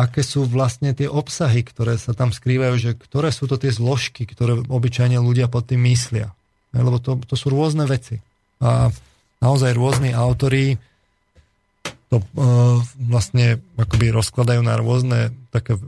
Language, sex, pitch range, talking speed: Slovak, male, 115-130 Hz, 145 wpm